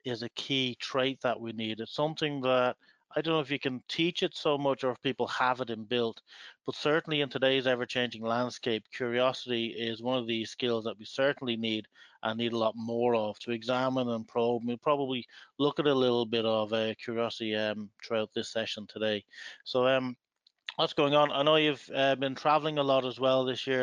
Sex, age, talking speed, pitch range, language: male, 30-49, 215 wpm, 115-140 Hz, English